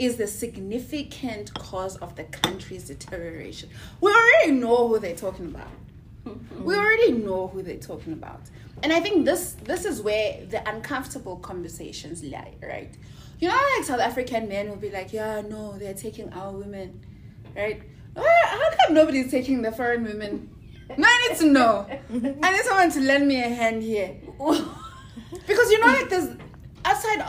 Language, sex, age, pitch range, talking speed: English, female, 20-39, 185-255 Hz, 170 wpm